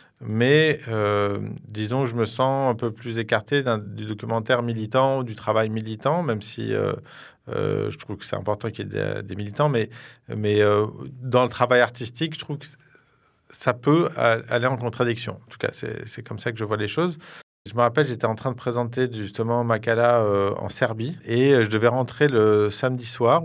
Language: French